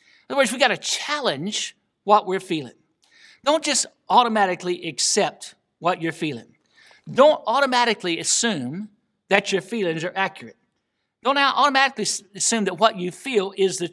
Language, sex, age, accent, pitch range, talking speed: English, male, 60-79, American, 180-225 Hz, 145 wpm